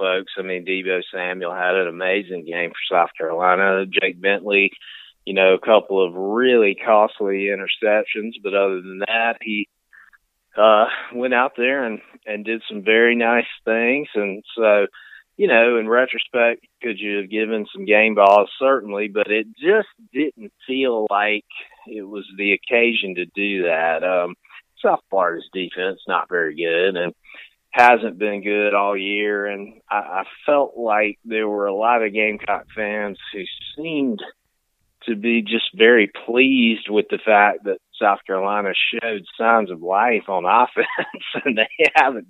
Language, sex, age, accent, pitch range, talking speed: English, male, 30-49, American, 100-120 Hz, 160 wpm